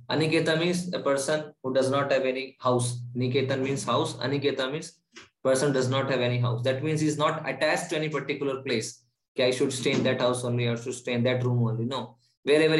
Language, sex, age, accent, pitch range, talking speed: English, male, 20-39, Indian, 125-145 Hz, 220 wpm